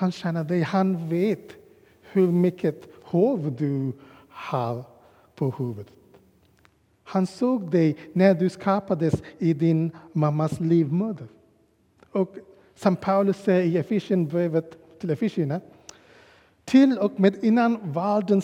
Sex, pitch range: male, 120-180 Hz